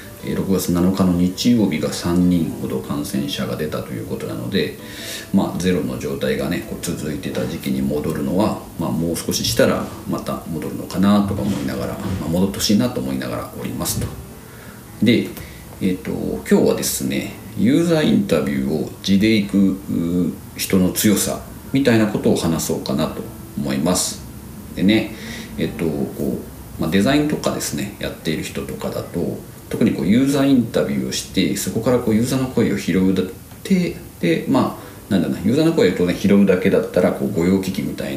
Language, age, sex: Japanese, 40-59, male